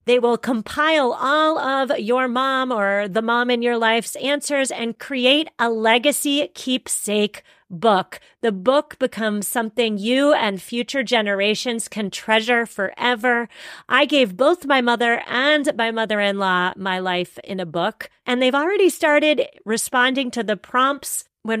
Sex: female